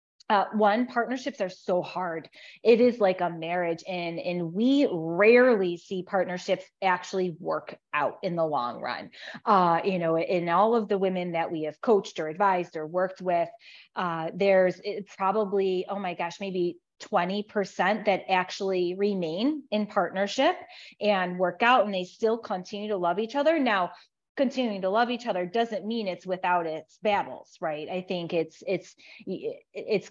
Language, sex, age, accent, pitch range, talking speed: English, female, 30-49, American, 180-225 Hz, 165 wpm